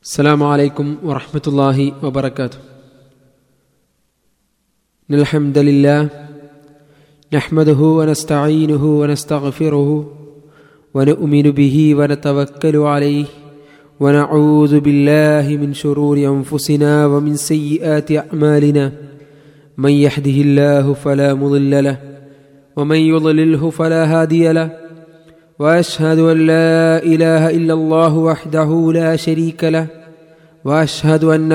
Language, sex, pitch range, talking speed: Malayalam, male, 145-165 Hz, 85 wpm